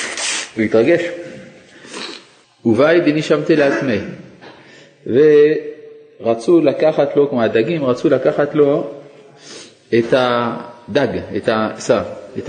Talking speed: 90 wpm